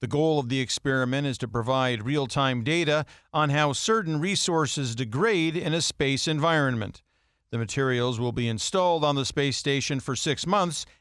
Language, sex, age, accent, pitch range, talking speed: English, male, 50-69, American, 125-170 Hz, 170 wpm